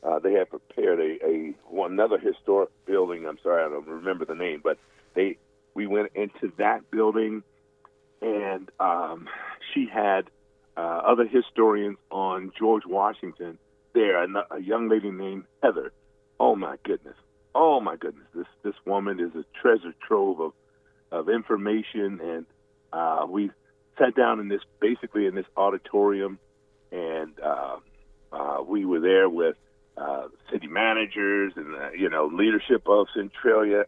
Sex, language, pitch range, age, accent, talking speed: male, English, 100-130 Hz, 50-69, American, 150 wpm